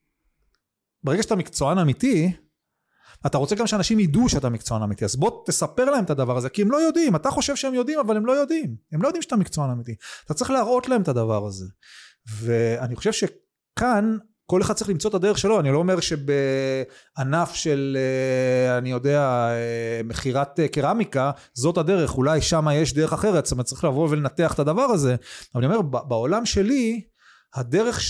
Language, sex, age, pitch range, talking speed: Hebrew, male, 30-49, 130-215 Hz, 175 wpm